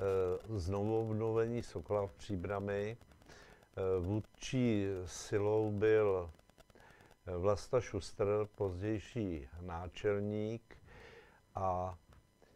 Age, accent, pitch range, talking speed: 50-69, native, 100-115 Hz, 60 wpm